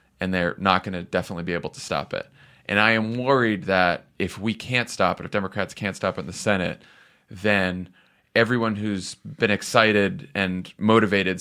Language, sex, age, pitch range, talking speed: English, male, 30-49, 95-130 Hz, 190 wpm